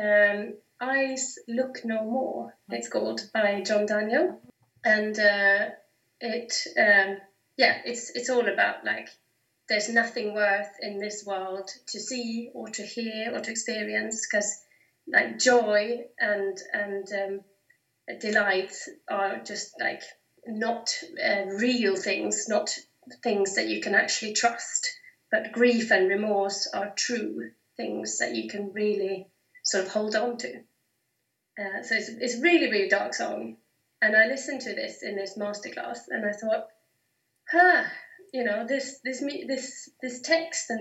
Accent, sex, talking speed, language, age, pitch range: British, female, 145 wpm, English, 30-49, 205-255 Hz